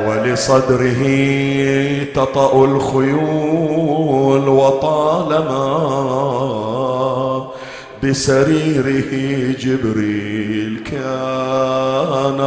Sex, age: male, 40-59